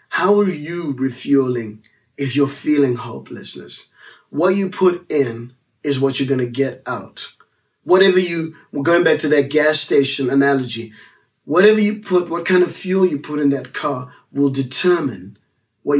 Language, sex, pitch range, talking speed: English, male, 135-170 Hz, 160 wpm